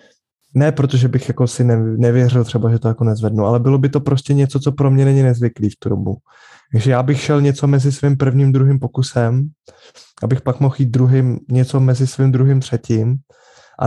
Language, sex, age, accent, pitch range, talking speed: Czech, male, 20-39, native, 120-135 Hz, 195 wpm